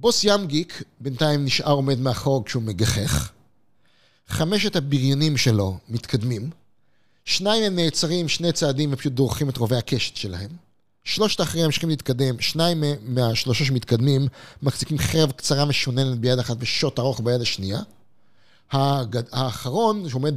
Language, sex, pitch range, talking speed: Hebrew, male, 120-150 Hz, 125 wpm